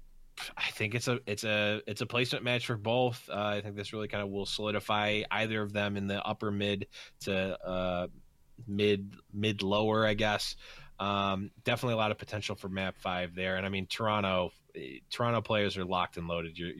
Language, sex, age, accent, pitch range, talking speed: English, male, 20-39, American, 95-120 Hz, 205 wpm